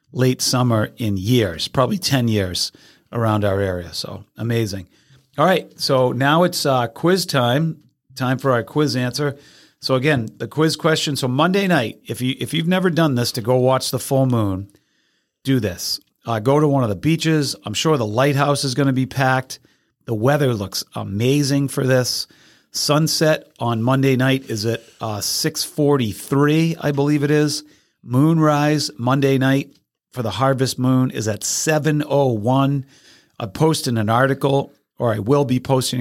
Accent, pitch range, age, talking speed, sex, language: American, 115-140 Hz, 40-59, 170 wpm, male, English